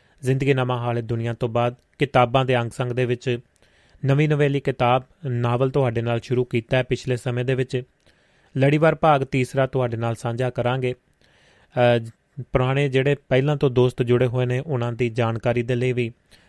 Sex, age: male, 30-49